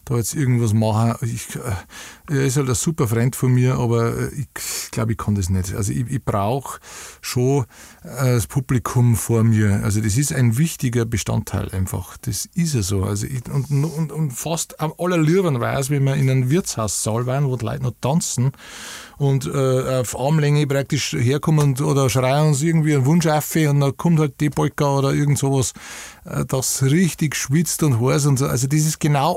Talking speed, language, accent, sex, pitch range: 200 wpm, German, Austrian, male, 120-150 Hz